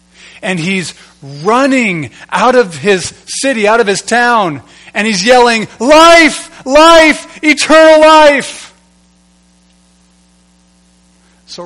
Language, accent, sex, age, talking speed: English, American, male, 30-49, 100 wpm